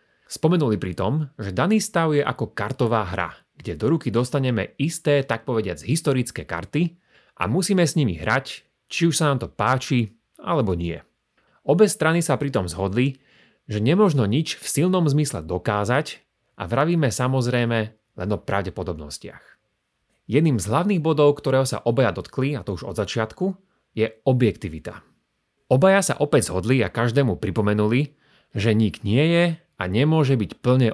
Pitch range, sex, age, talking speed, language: 105-145 Hz, male, 30-49, 155 wpm, Slovak